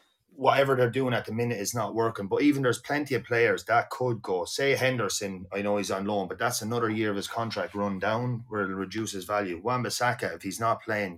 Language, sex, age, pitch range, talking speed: English, male, 30-49, 95-120 Hz, 235 wpm